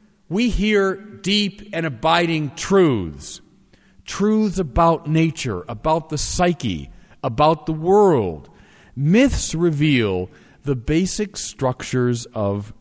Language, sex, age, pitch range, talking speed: English, male, 50-69, 110-175 Hz, 100 wpm